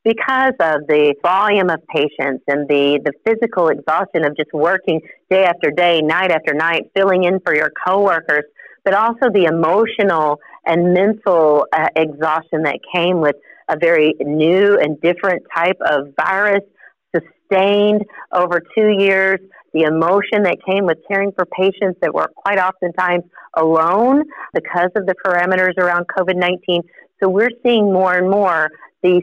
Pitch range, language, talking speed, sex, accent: 165-200 Hz, English, 150 wpm, female, American